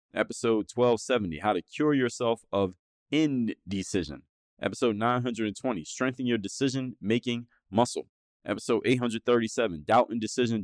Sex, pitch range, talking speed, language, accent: male, 100-125 Hz, 115 wpm, English, American